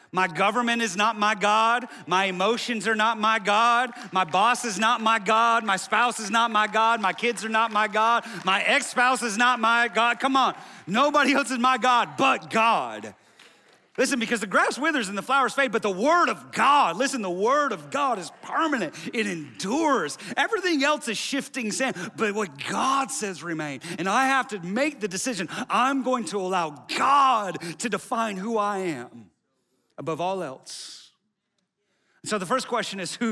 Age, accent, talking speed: 40-59, American, 185 wpm